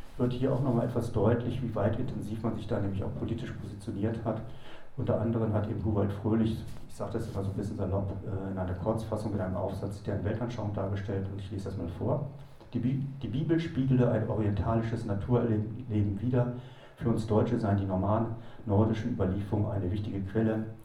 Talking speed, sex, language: 190 wpm, male, German